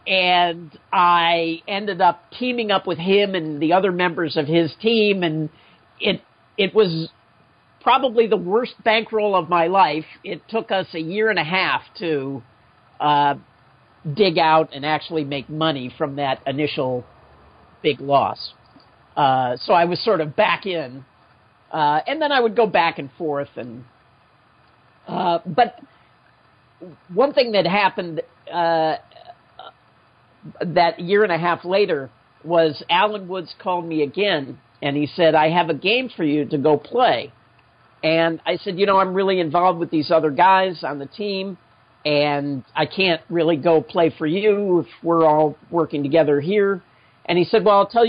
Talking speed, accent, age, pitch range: 165 wpm, American, 50-69, 150-190 Hz